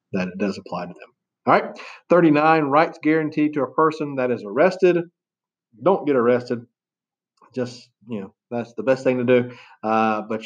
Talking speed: 180 wpm